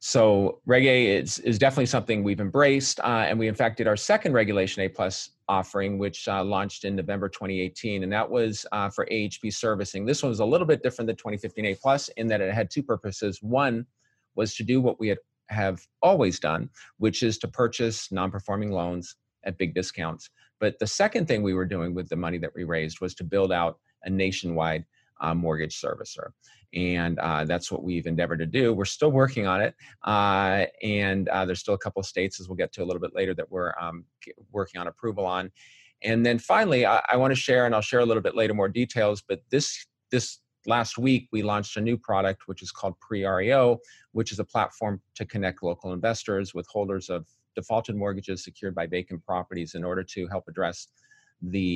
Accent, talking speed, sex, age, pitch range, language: American, 210 wpm, male, 40-59, 95-115 Hz, English